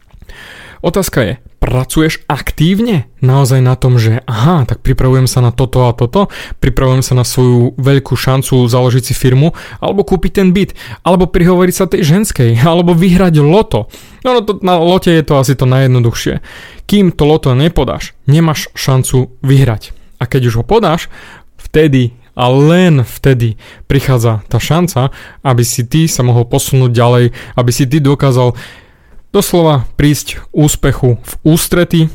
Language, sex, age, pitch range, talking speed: Slovak, male, 20-39, 125-155 Hz, 150 wpm